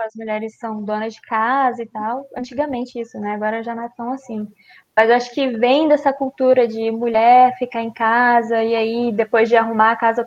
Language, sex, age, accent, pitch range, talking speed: Portuguese, female, 10-29, Brazilian, 225-265 Hz, 205 wpm